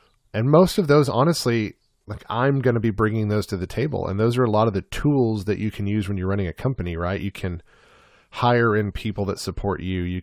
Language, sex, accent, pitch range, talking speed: English, male, American, 95-120 Hz, 245 wpm